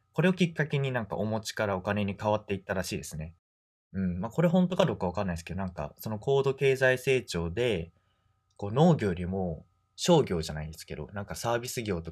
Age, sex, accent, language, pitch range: 20-39, male, native, Japanese, 95-140 Hz